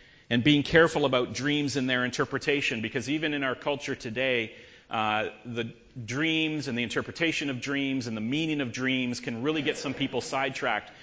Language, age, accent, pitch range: English, 40-59, American, 120-150 Hz